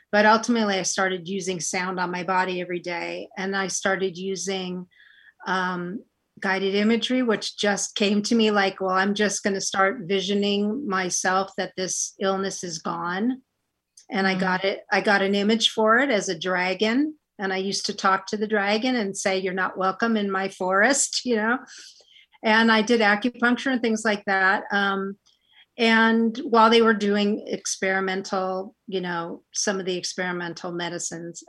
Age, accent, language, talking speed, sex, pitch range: 40-59, American, English, 170 wpm, female, 185-220 Hz